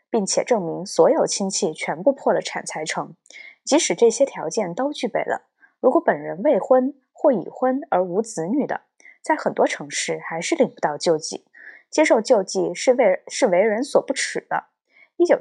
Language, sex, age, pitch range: Chinese, female, 20-39, 190-285 Hz